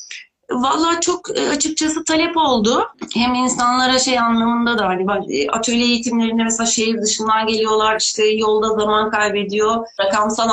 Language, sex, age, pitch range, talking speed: Turkish, female, 30-49, 215-260 Hz, 125 wpm